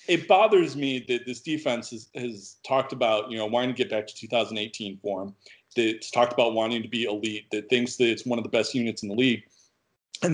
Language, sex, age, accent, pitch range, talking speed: English, male, 40-59, American, 110-155 Hz, 225 wpm